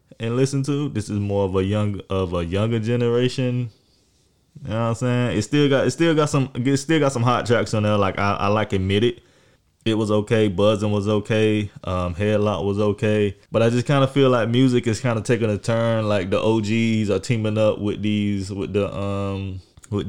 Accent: American